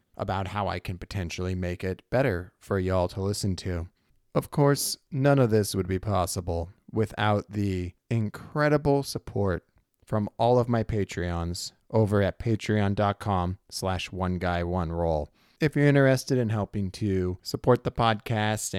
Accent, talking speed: American, 145 wpm